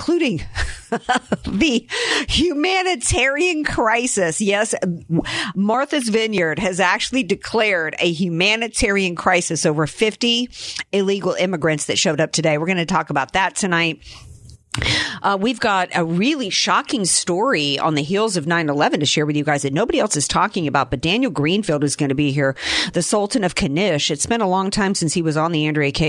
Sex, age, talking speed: female, 50-69, 175 wpm